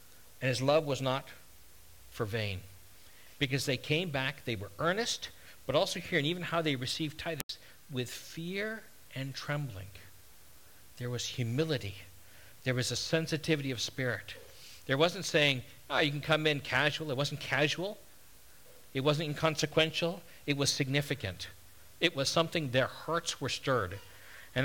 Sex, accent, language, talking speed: male, American, English, 150 wpm